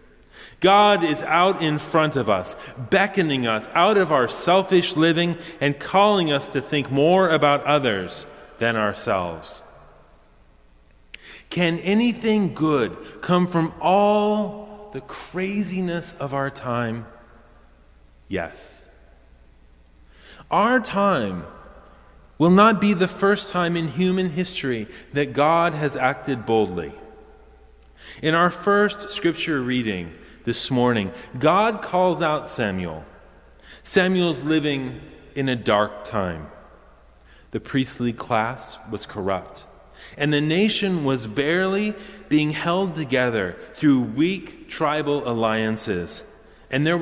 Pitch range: 110-180 Hz